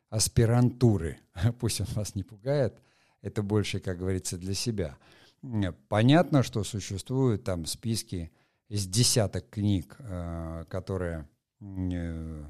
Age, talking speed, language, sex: 50-69, 100 wpm, Russian, male